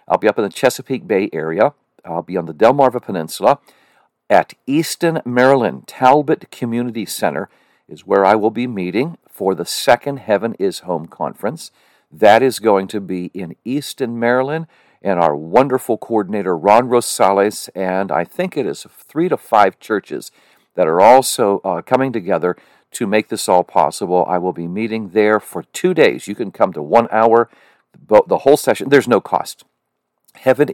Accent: American